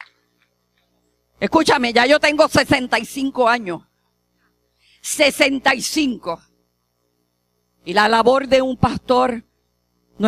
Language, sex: English, female